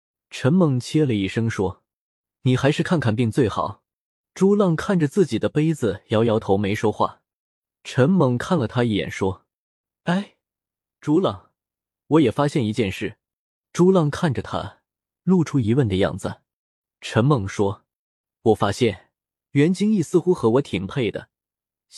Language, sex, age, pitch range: Chinese, male, 20-39, 110-165 Hz